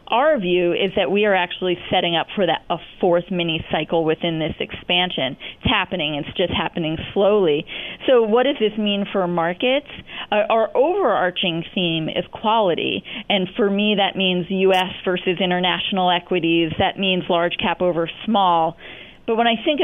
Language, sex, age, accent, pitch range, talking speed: English, female, 30-49, American, 180-225 Hz, 165 wpm